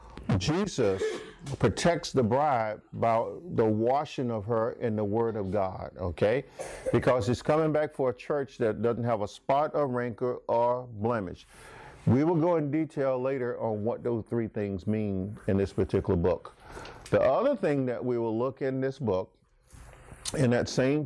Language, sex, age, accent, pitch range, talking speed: English, male, 50-69, American, 105-135 Hz, 170 wpm